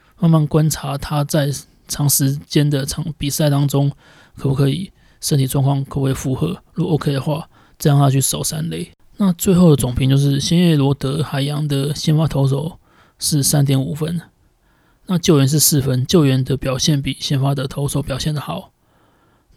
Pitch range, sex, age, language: 140-160 Hz, male, 20-39, Chinese